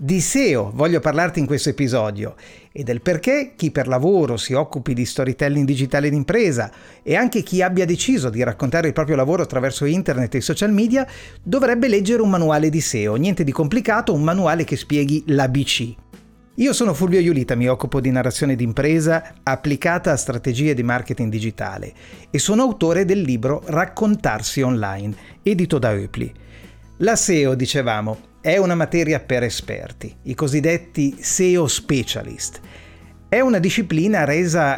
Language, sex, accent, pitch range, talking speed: Italian, male, native, 130-180 Hz, 155 wpm